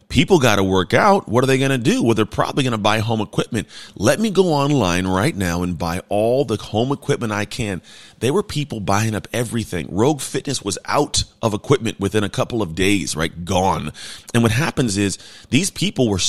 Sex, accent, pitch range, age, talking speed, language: male, American, 95-130 Hz, 30-49, 215 wpm, English